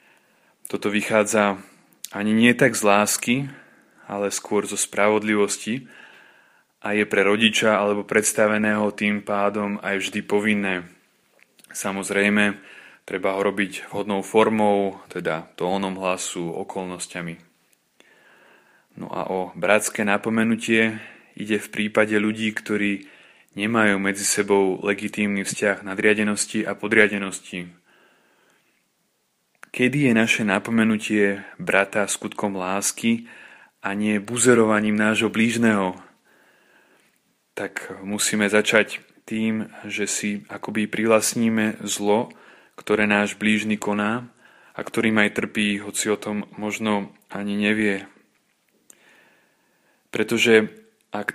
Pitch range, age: 100-110 Hz, 20-39